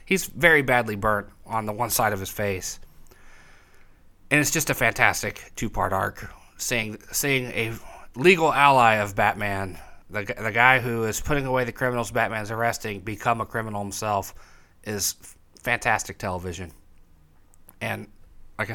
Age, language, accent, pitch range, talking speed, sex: 30-49, English, American, 95-125 Hz, 145 wpm, male